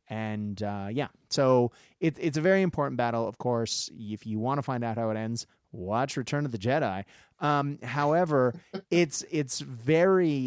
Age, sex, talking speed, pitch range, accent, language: 30-49, male, 180 wpm, 110-135 Hz, American, English